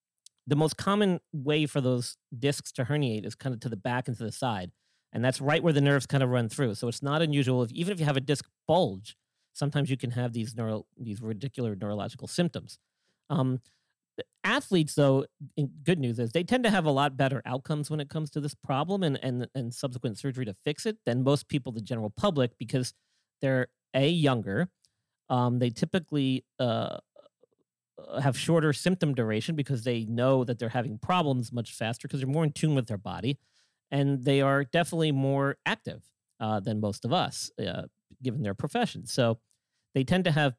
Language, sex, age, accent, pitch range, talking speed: English, male, 40-59, American, 120-150 Hz, 195 wpm